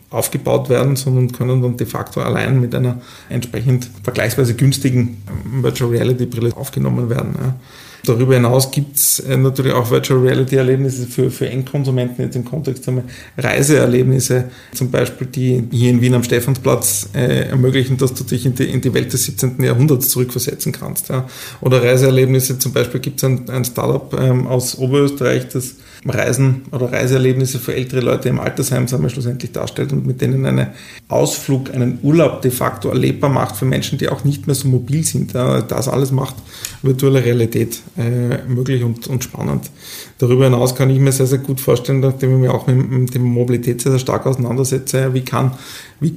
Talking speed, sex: 175 wpm, male